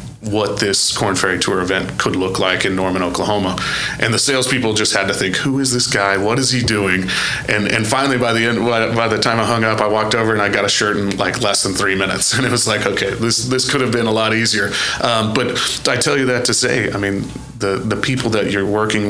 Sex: male